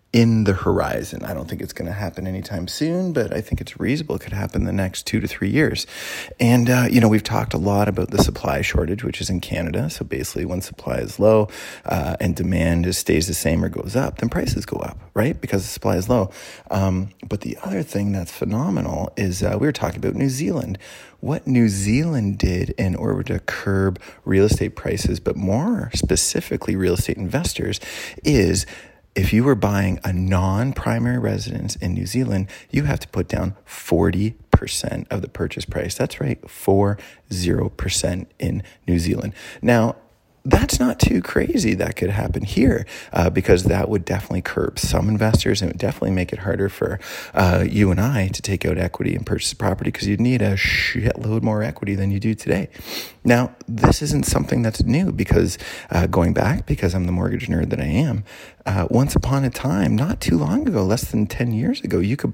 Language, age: English, 30-49